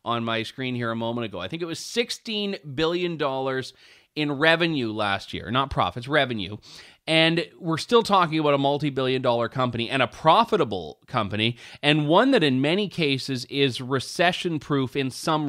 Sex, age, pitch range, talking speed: male, 30-49, 130-170 Hz, 165 wpm